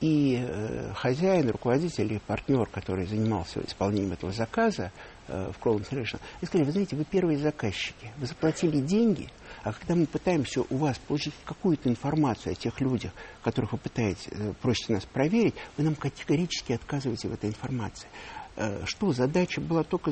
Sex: male